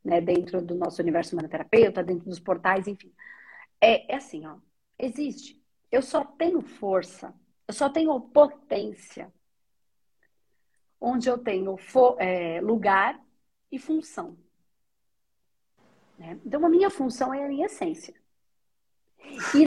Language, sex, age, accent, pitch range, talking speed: Portuguese, female, 40-59, Brazilian, 215-310 Hz, 125 wpm